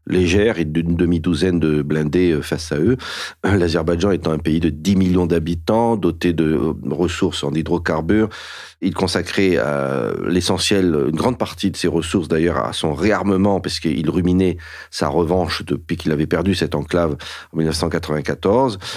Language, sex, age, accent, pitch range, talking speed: French, male, 40-59, French, 80-90 Hz, 155 wpm